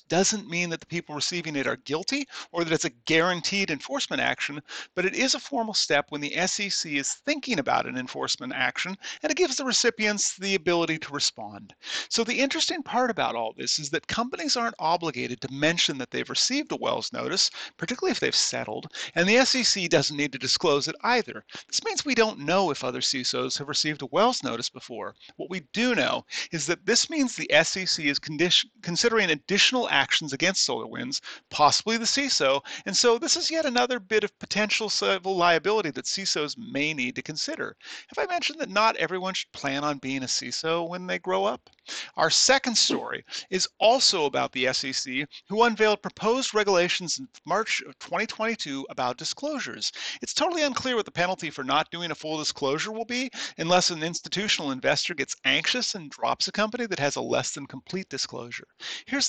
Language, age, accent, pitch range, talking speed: English, 40-59, American, 155-235 Hz, 190 wpm